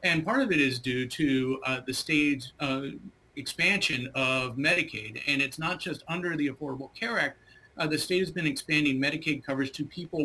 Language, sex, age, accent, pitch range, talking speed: English, male, 40-59, American, 135-170 Hz, 195 wpm